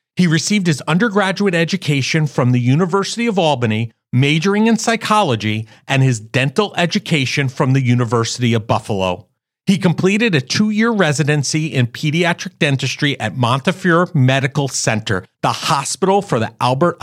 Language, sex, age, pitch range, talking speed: English, male, 40-59, 120-170 Hz, 135 wpm